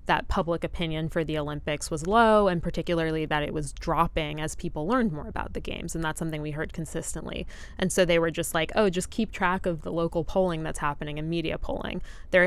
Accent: American